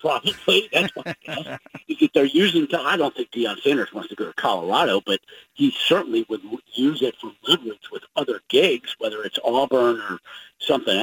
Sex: male